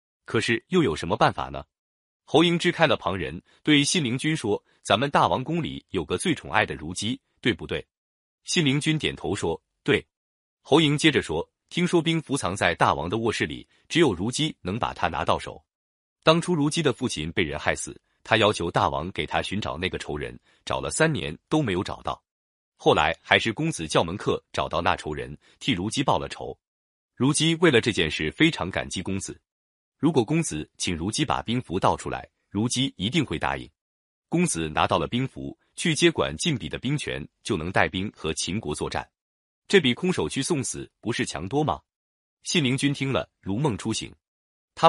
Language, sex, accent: Chinese, male, native